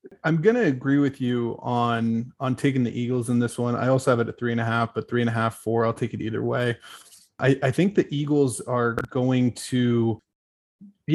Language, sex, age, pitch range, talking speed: English, male, 20-39, 115-135 Hz, 230 wpm